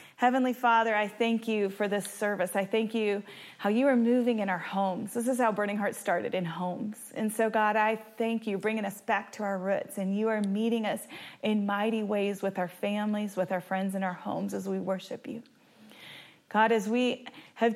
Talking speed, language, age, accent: 215 wpm, English, 30-49, American